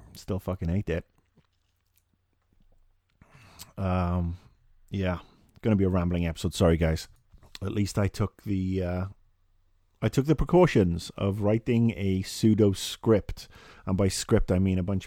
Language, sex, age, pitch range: English, male, 30-49, 85-100 Hz